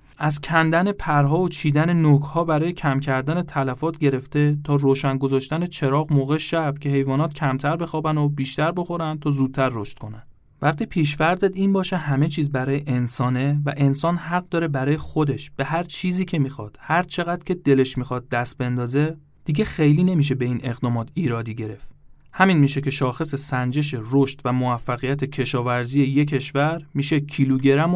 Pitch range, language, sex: 135-165 Hz, Persian, male